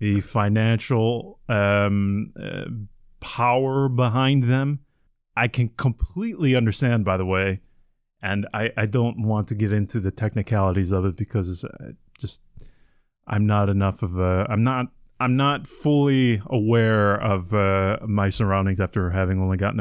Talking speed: 145 wpm